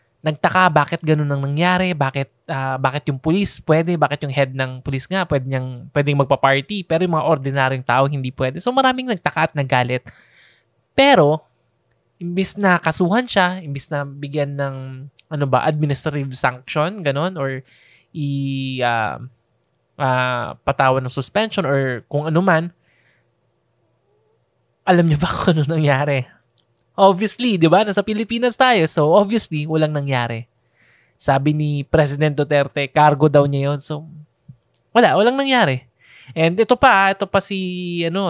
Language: Filipino